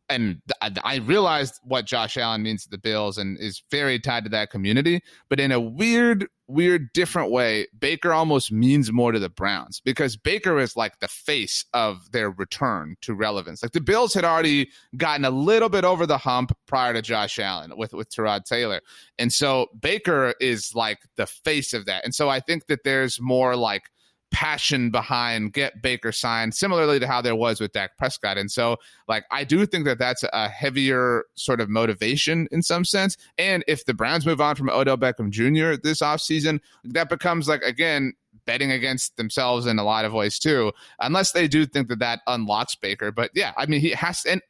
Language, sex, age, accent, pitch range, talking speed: English, male, 30-49, American, 115-160 Hz, 200 wpm